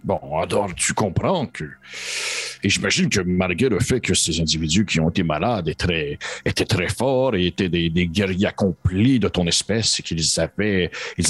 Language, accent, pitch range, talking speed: French, French, 90-125 Hz, 190 wpm